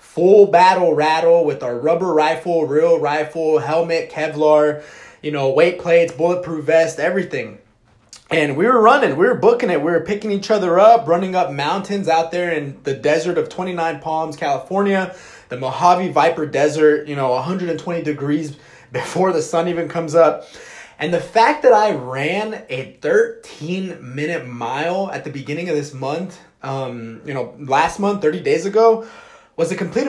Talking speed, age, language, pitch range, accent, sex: 170 wpm, 20-39, English, 150-185 Hz, American, male